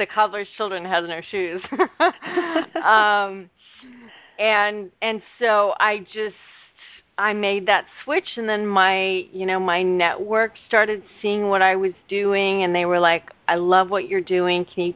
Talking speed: 155 wpm